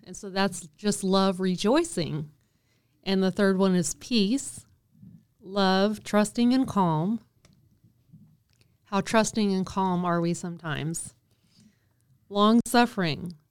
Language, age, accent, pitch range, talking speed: English, 30-49, American, 160-210 Hz, 105 wpm